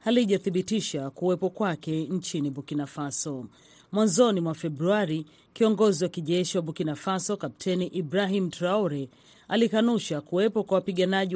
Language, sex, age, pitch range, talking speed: Swahili, female, 40-59, 165-210 Hz, 110 wpm